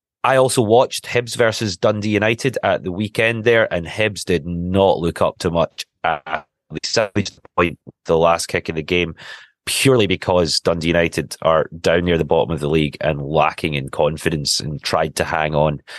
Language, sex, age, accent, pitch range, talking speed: English, male, 30-49, British, 80-110 Hz, 175 wpm